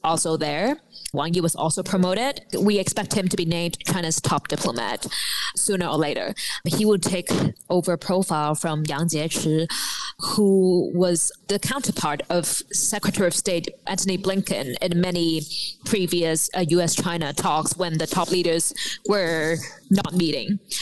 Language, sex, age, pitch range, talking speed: English, female, 20-39, 160-190 Hz, 140 wpm